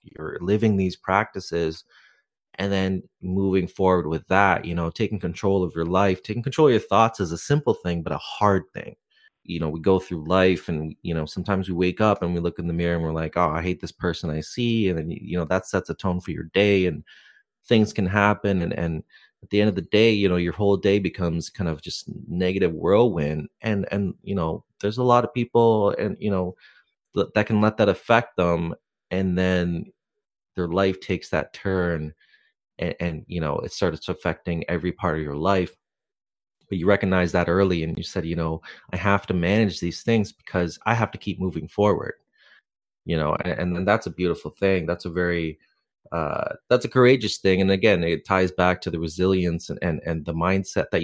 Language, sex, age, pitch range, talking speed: English, male, 30-49, 85-100 Hz, 215 wpm